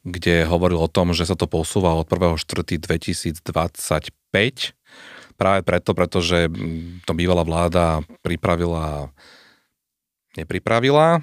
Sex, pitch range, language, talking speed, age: male, 85-100 Hz, Slovak, 105 wpm, 30-49